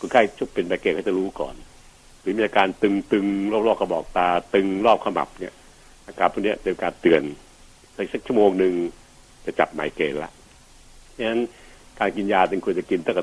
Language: Thai